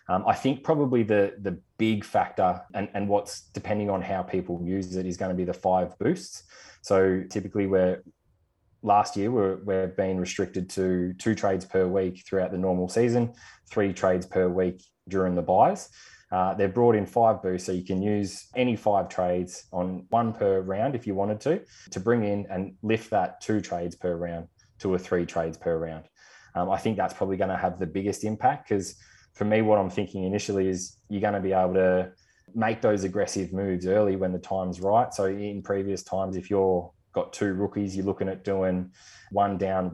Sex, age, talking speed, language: male, 20-39, 205 wpm, English